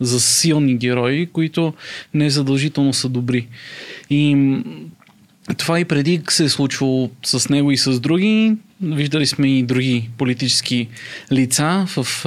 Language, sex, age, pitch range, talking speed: Bulgarian, male, 20-39, 130-150 Hz, 130 wpm